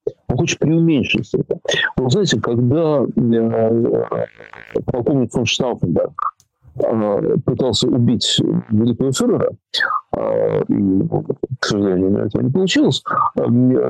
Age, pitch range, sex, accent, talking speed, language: 50-69, 120-185 Hz, male, native, 80 wpm, Russian